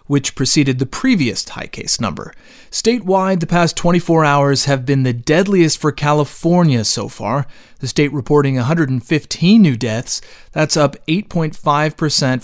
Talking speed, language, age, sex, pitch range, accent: 140 wpm, English, 30-49, male, 135-170 Hz, American